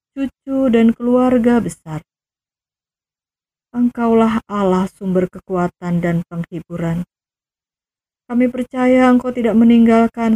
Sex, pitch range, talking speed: female, 175-225 Hz, 85 wpm